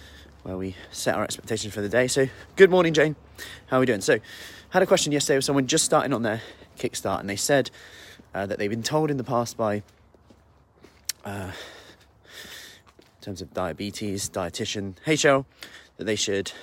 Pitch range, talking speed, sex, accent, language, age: 95-135 Hz, 185 wpm, male, British, English, 20-39